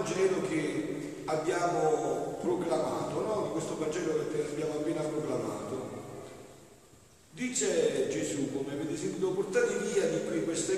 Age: 50-69